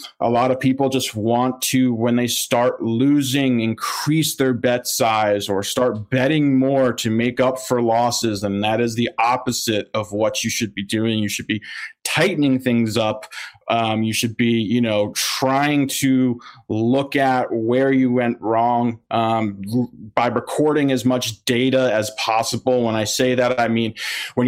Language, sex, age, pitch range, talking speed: English, male, 20-39, 115-135 Hz, 170 wpm